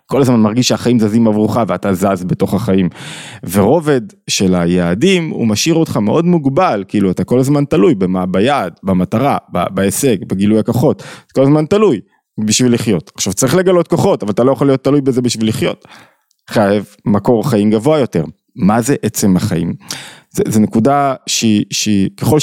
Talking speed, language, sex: 160 wpm, Hebrew, male